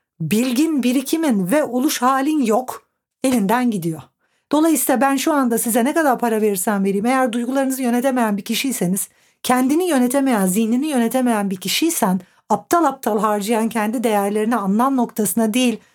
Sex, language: female, Turkish